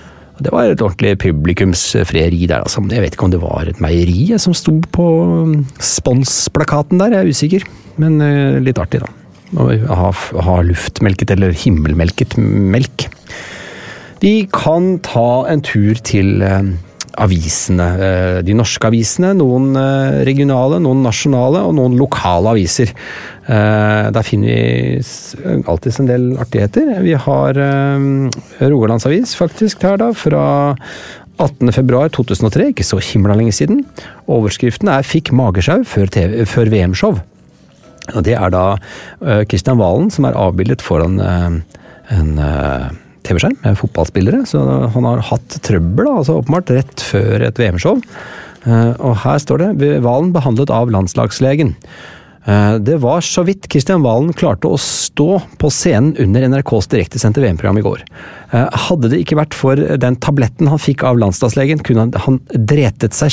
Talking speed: 145 wpm